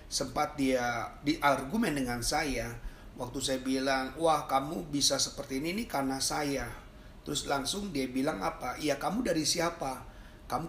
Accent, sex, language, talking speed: native, male, Indonesian, 145 wpm